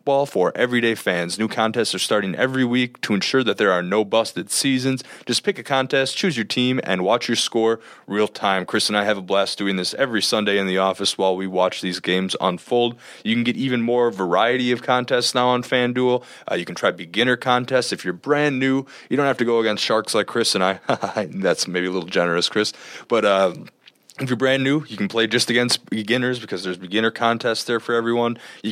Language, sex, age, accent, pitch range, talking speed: English, male, 20-39, American, 95-125 Hz, 225 wpm